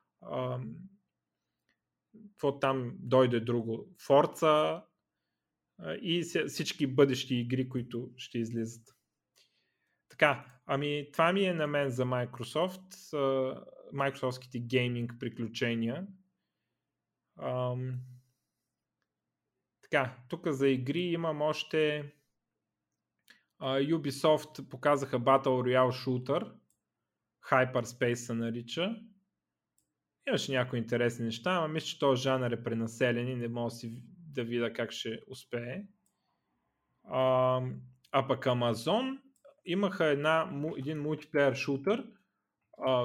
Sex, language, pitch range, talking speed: male, Bulgarian, 125-165 Hz, 100 wpm